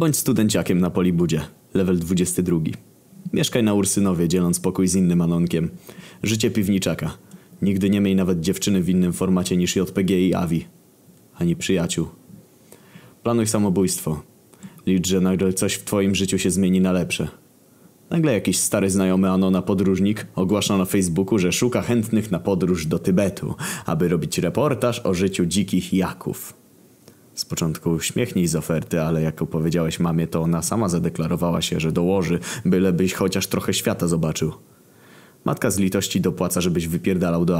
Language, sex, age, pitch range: Polish, male, 20-39, 90-100 Hz